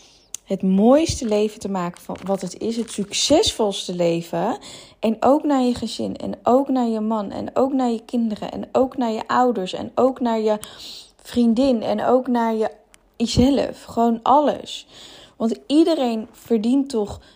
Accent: Dutch